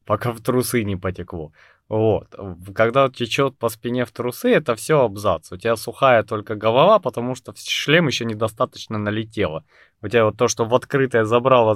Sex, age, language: male, 20-39, Russian